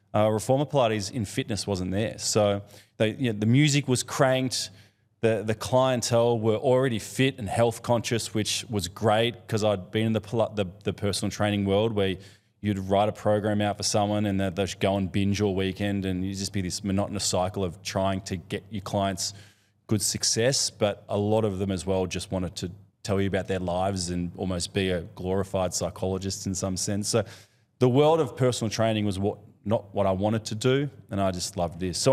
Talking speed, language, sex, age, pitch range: 210 wpm, English, male, 20-39, 95-110 Hz